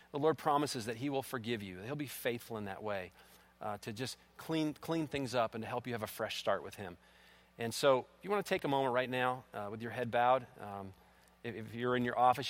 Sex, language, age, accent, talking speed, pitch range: male, English, 40-59, American, 265 wpm, 110-140 Hz